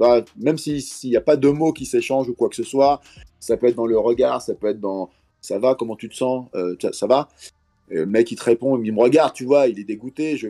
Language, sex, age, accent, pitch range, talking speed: French, male, 30-49, French, 105-150 Hz, 285 wpm